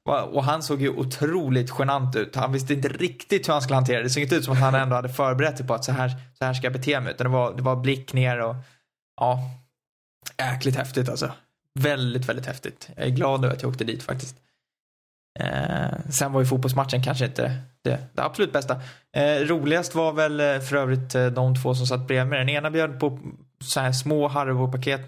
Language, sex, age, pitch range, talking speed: Swedish, male, 20-39, 130-150 Hz, 220 wpm